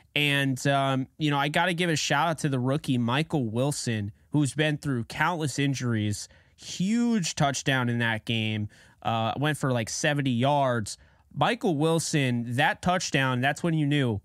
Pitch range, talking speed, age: 125-160 Hz, 170 wpm, 20-39